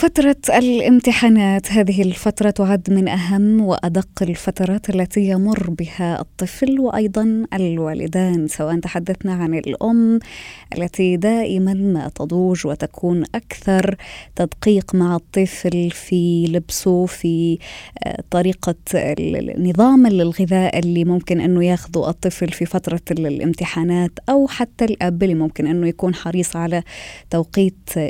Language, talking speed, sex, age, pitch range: Arabic, 110 wpm, female, 20-39, 175-215 Hz